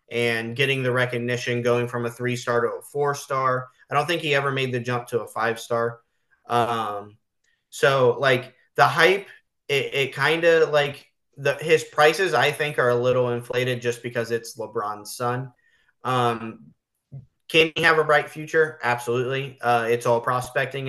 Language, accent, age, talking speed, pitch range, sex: English, American, 20-39, 165 wpm, 120-140 Hz, male